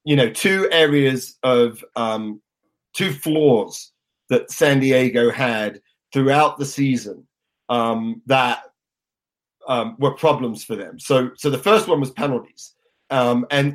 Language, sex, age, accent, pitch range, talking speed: English, male, 30-49, British, 120-145 Hz, 135 wpm